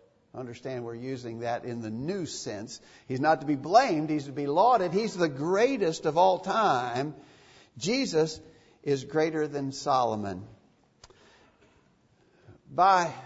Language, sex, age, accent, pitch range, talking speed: English, male, 60-79, American, 120-160 Hz, 130 wpm